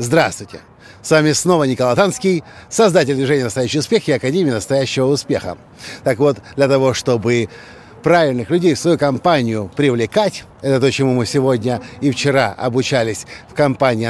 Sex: male